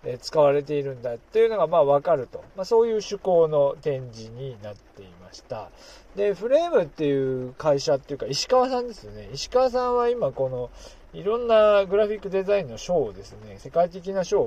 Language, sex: Japanese, male